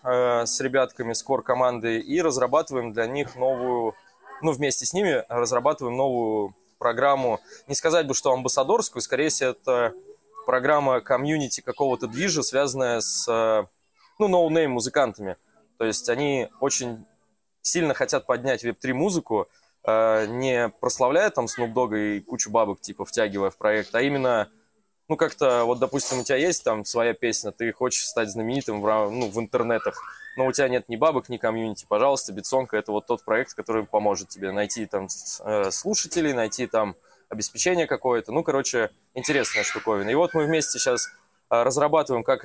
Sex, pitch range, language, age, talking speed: male, 110-140 Hz, Russian, 20-39, 155 wpm